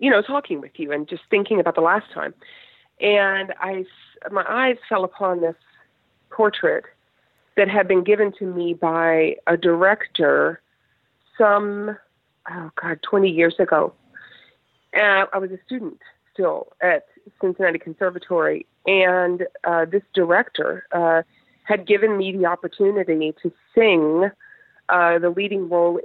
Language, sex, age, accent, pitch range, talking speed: English, female, 40-59, American, 170-210 Hz, 135 wpm